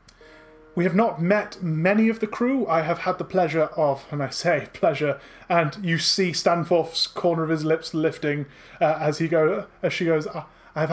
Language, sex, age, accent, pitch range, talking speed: English, male, 30-49, British, 140-170 Hz, 190 wpm